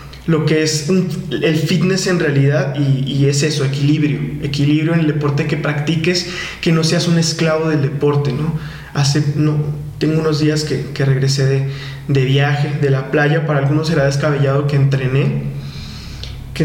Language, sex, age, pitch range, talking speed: Spanish, male, 20-39, 140-155 Hz, 175 wpm